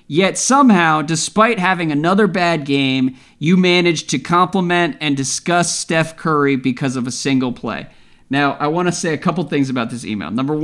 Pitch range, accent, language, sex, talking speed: 140-185 Hz, American, English, male, 180 wpm